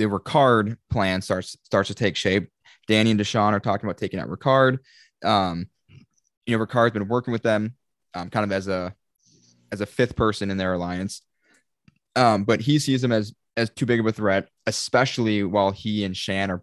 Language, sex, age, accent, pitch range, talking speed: English, male, 20-39, American, 95-115 Hz, 200 wpm